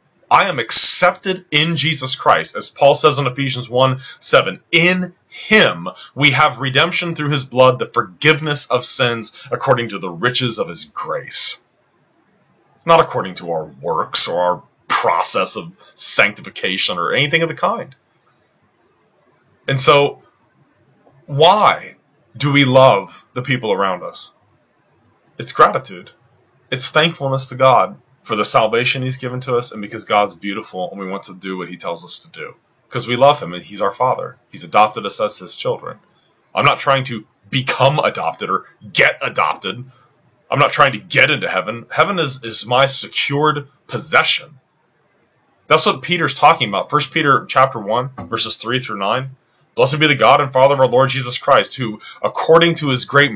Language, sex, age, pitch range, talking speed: English, male, 30-49, 120-155 Hz, 170 wpm